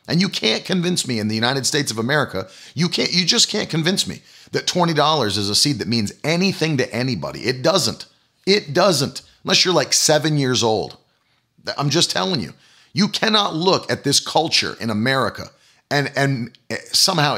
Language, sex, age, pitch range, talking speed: English, male, 40-59, 120-165 Hz, 185 wpm